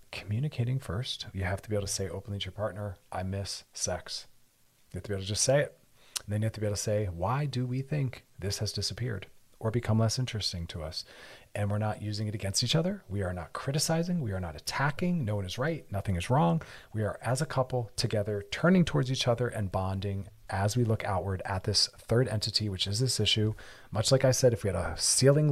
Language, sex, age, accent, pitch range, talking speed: English, male, 40-59, American, 100-125 Hz, 240 wpm